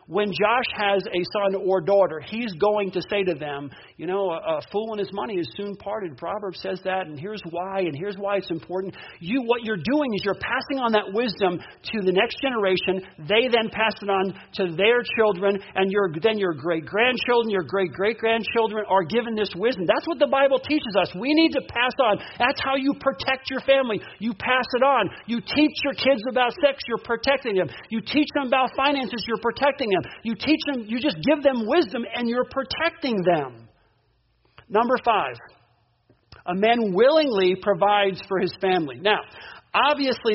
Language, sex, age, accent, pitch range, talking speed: English, male, 50-69, American, 190-260 Hz, 190 wpm